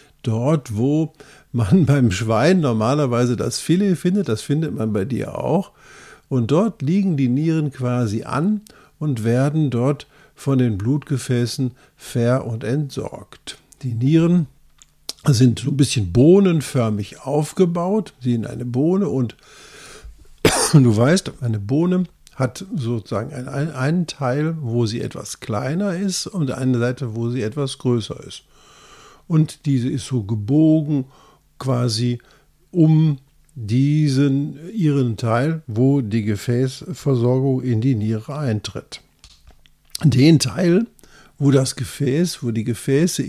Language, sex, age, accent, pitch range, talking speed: German, male, 50-69, German, 120-155 Hz, 125 wpm